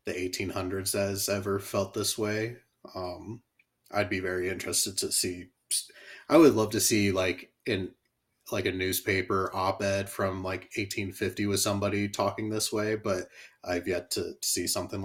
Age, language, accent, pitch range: 30-49, English, American, 95-110 Hz